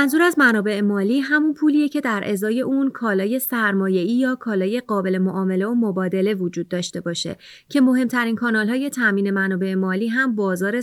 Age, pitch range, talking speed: 30-49, 190-250 Hz, 170 wpm